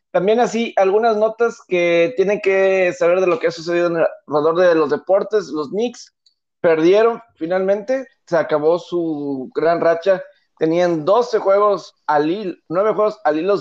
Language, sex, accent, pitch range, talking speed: Spanish, male, Mexican, 155-210 Hz, 165 wpm